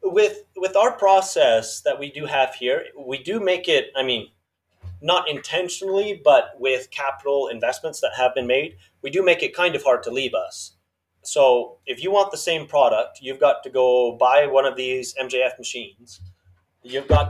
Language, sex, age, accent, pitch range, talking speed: English, male, 30-49, American, 115-165 Hz, 185 wpm